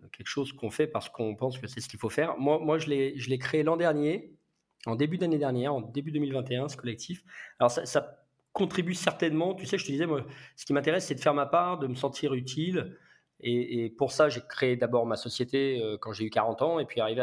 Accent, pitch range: French, 120-150 Hz